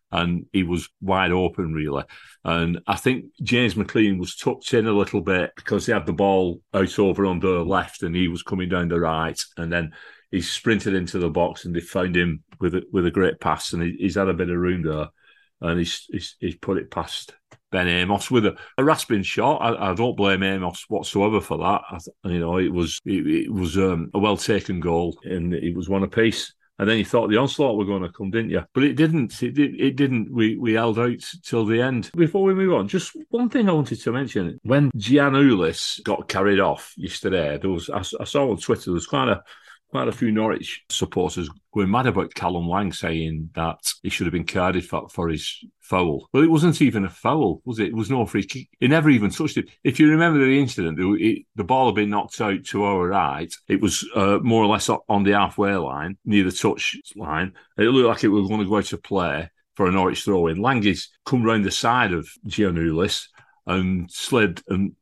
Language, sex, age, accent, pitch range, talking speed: English, male, 40-59, British, 90-115 Hz, 230 wpm